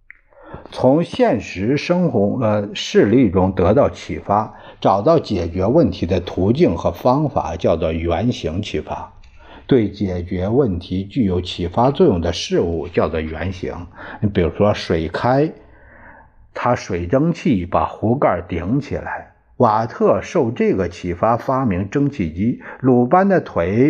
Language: Chinese